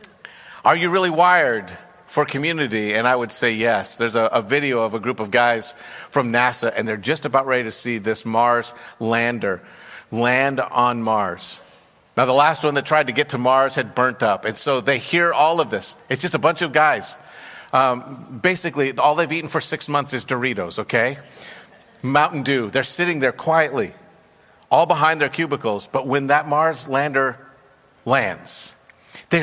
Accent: American